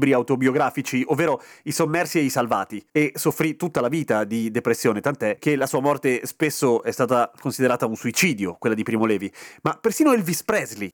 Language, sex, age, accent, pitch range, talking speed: Italian, male, 30-49, native, 135-185 Hz, 180 wpm